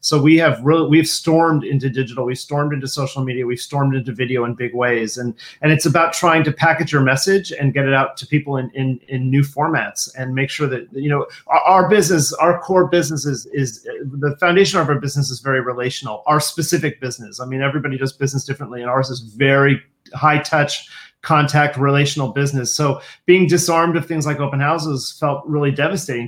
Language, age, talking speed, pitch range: English, 30-49, 210 wpm, 135-155 Hz